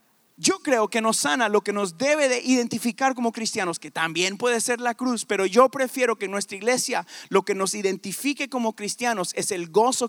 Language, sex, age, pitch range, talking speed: Spanish, male, 30-49, 200-250 Hz, 200 wpm